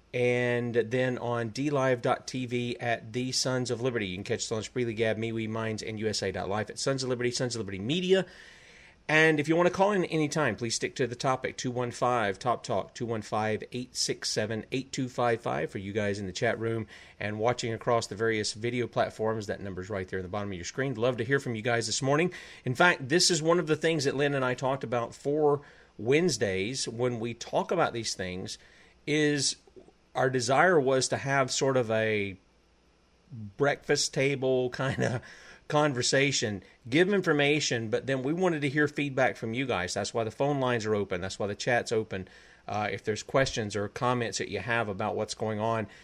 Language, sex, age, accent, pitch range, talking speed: English, male, 40-59, American, 110-135 Hz, 200 wpm